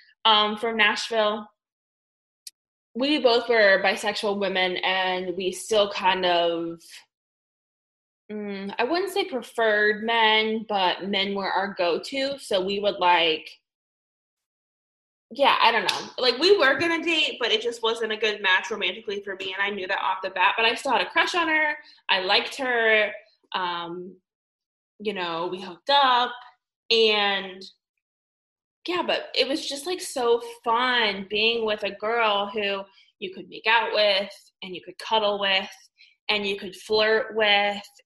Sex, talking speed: female, 160 wpm